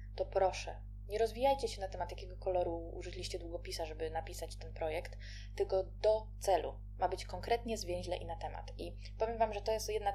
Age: 20-39